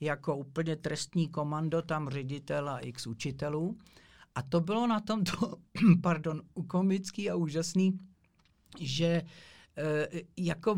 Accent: native